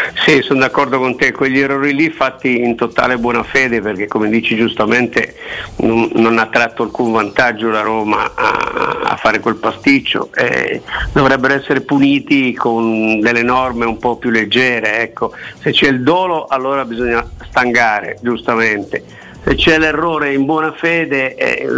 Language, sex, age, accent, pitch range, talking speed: Italian, male, 50-69, native, 120-145 Hz, 155 wpm